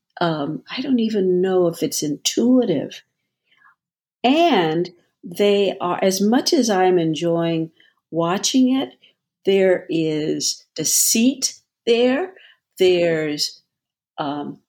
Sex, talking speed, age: female, 95 wpm, 50-69